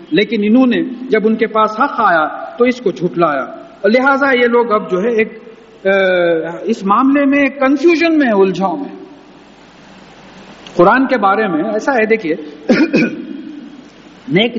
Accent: Indian